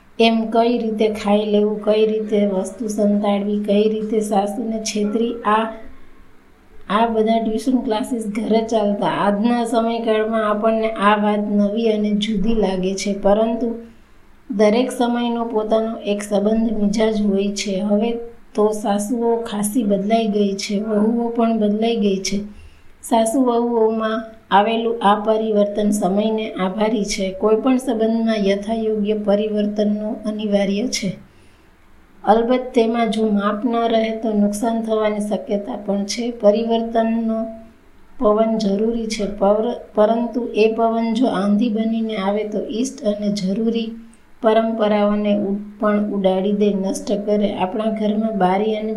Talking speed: 100 wpm